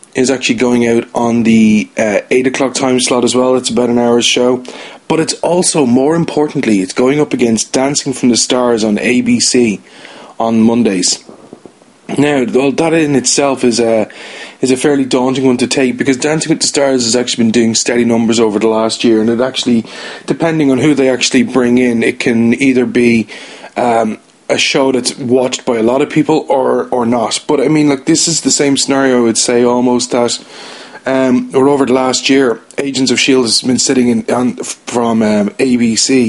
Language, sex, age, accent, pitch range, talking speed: English, male, 30-49, Irish, 115-135 Hz, 200 wpm